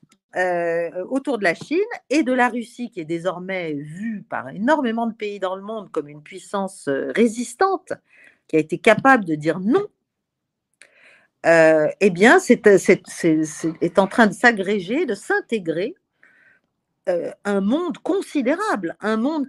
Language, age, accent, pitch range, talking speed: French, 50-69, French, 170-265 Hz, 155 wpm